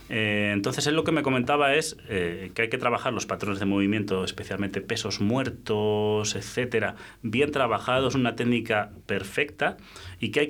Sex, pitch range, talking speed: male, 105-125 Hz, 165 wpm